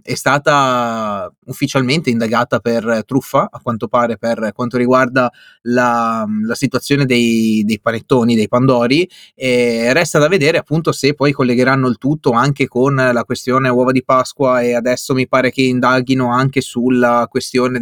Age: 30-49